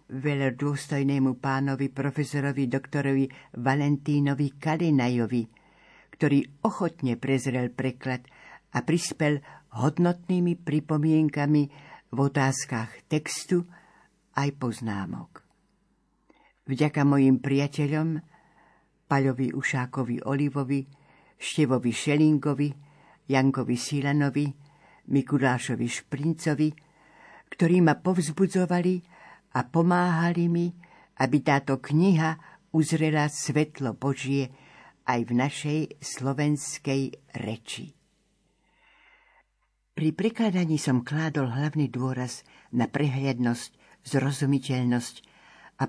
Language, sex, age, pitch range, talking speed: Slovak, female, 60-79, 130-155 Hz, 75 wpm